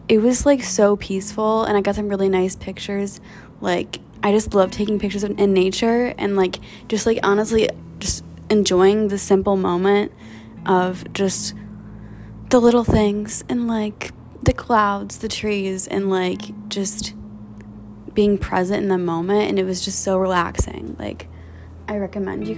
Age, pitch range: 20-39, 180-215 Hz